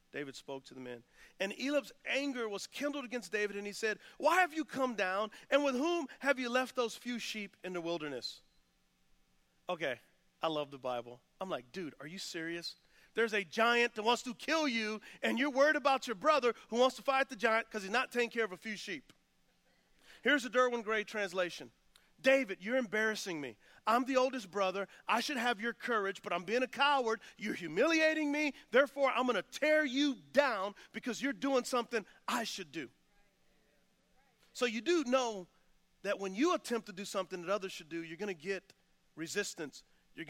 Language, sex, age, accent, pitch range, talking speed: English, male, 40-59, American, 170-255 Hz, 200 wpm